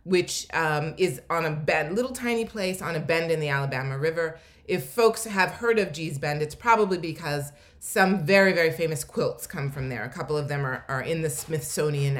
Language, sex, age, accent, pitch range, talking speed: English, female, 30-49, American, 155-205 Hz, 205 wpm